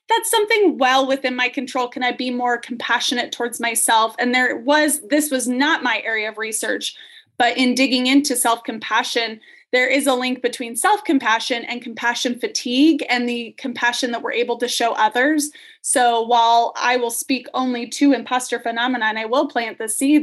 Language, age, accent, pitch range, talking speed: English, 20-39, American, 235-280 Hz, 180 wpm